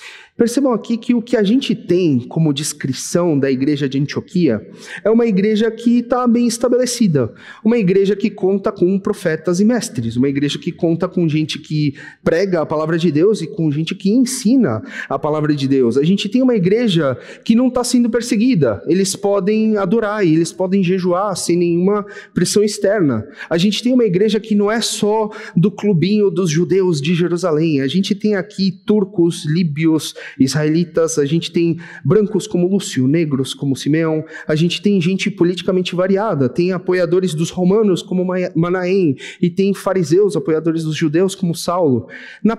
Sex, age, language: male, 30-49, Portuguese